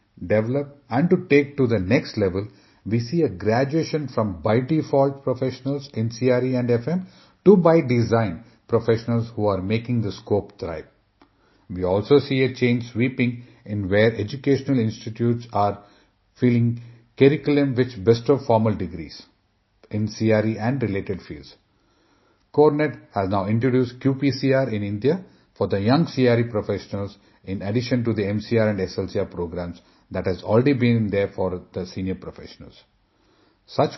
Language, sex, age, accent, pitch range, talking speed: English, male, 40-59, Indian, 105-130 Hz, 145 wpm